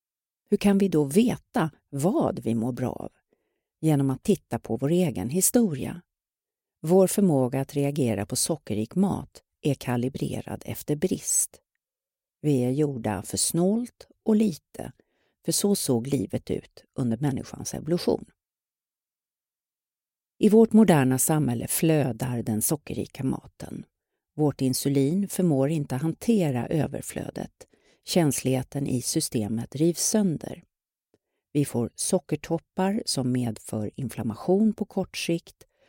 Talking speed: 120 wpm